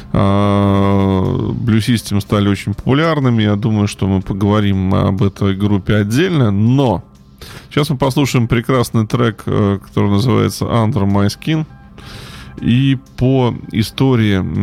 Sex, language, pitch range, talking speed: male, Russian, 100-120 Hz, 115 wpm